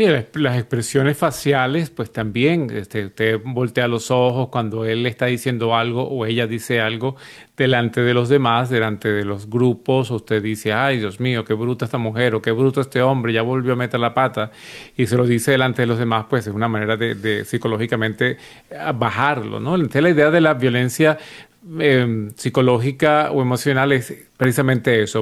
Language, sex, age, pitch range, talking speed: Spanish, male, 40-59, 115-135 Hz, 180 wpm